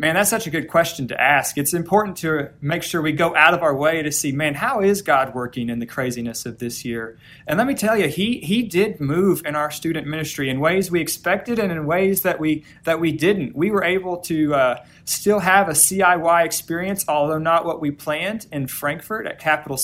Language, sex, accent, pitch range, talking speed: English, male, American, 145-185 Hz, 230 wpm